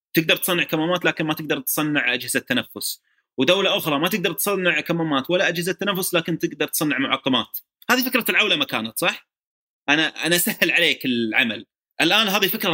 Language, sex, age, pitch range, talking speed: Arabic, male, 30-49, 130-190 Hz, 165 wpm